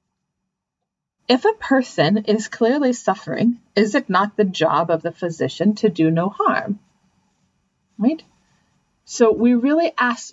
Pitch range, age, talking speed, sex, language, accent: 175-245 Hz, 40-59, 135 wpm, female, English, American